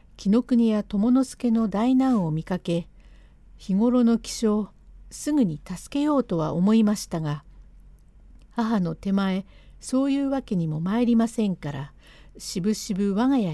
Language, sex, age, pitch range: Japanese, female, 60-79, 170-240 Hz